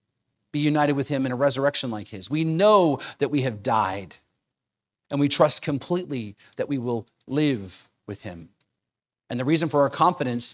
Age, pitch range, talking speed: 40-59, 140-190 Hz, 175 wpm